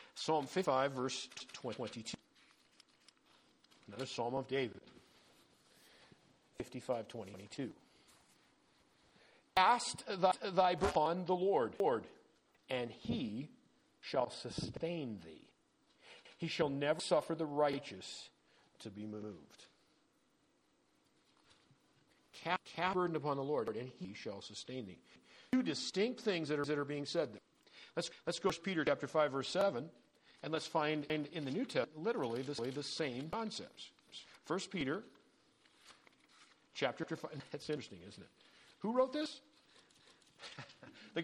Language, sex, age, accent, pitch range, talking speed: English, male, 50-69, American, 135-185 Hz, 125 wpm